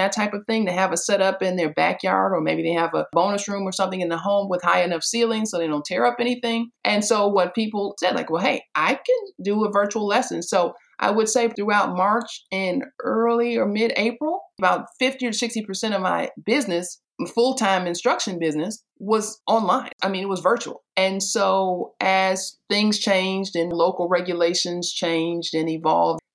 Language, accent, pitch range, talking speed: English, American, 170-210 Hz, 195 wpm